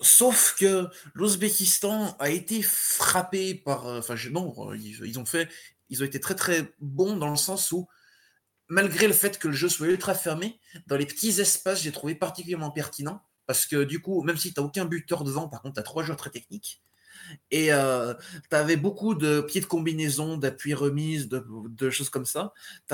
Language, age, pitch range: French, 20-39, 140-185 Hz